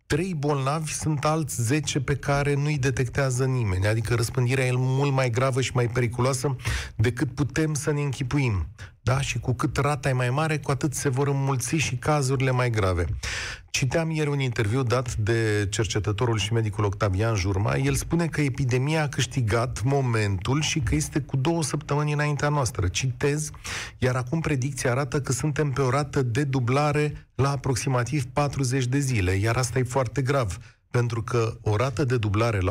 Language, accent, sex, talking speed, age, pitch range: Romanian, native, male, 175 wpm, 30-49, 115-145 Hz